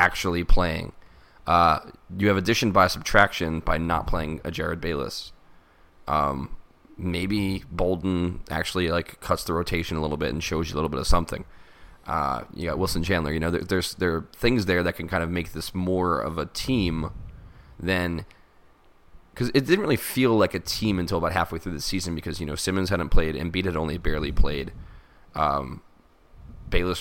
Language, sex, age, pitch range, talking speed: English, male, 20-39, 80-95 Hz, 185 wpm